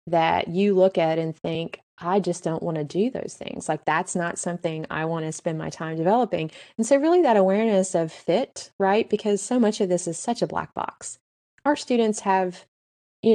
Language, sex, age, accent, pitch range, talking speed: English, female, 20-39, American, 165-190 Hz, 210 wpm